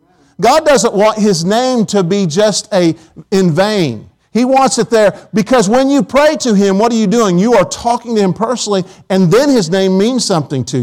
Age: 50-69